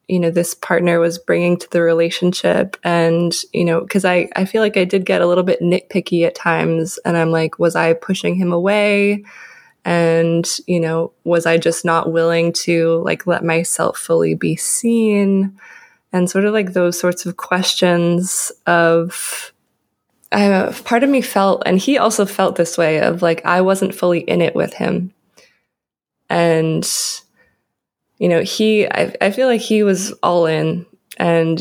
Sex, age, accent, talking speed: female, 20-39, American, 175 wpm